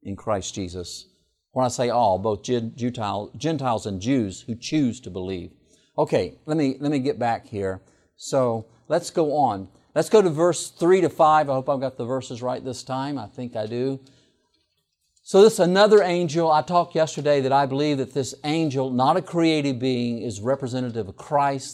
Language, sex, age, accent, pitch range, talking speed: English, male, 50-69, American, 120-155 Hz, 190 wpm